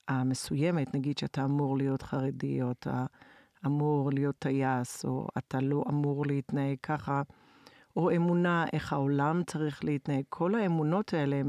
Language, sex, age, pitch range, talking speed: Hebrew, female, 50-69, 140-170 Hz, 140 wpm